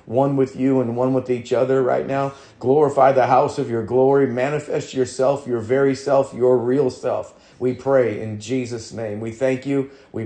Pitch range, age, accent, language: 120-135 Hz, 40-59, American, English